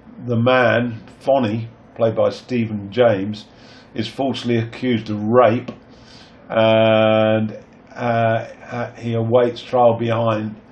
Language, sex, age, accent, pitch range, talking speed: English, male, 50-69, British, 110-120 Hz, 100 wpm